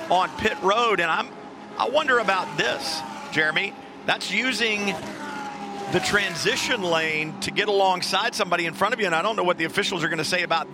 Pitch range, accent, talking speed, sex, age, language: 170-200 Hz, American, 200 wpm, male, 50-69, English